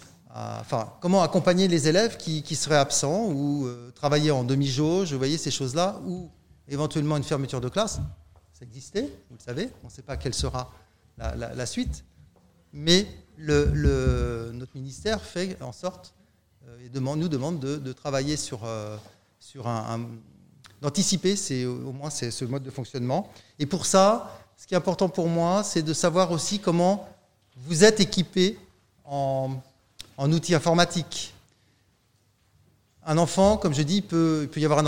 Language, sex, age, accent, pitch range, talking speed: French, male, 30-49, French, 120-170 Hz, 175 wpm